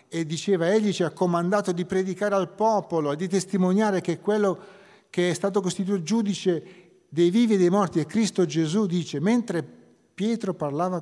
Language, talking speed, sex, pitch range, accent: Italian, 180 wpm, male, 135-180 Hz, native